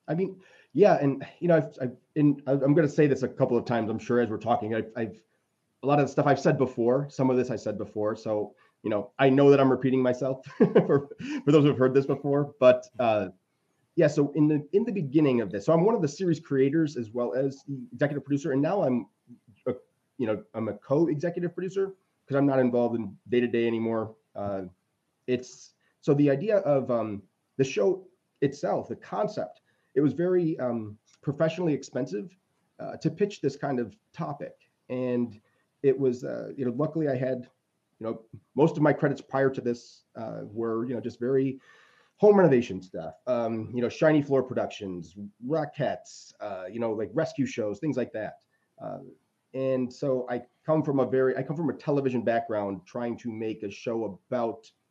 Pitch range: 120-150 Hz